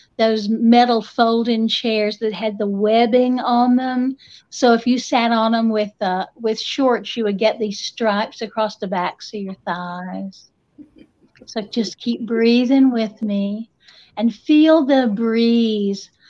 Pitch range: 215-235 Hz